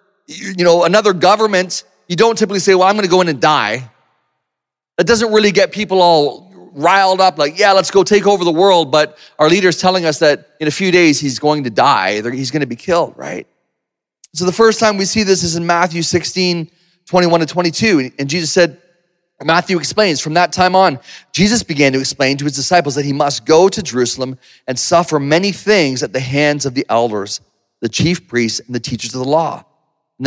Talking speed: 215 wpm